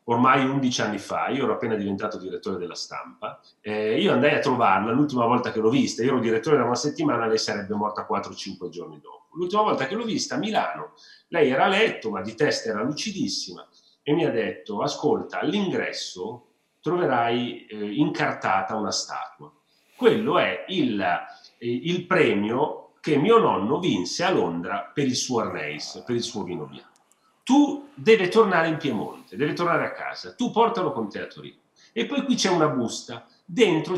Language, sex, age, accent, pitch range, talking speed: Italian, male, 40-59, native, 110-185 Hz, 180 wpm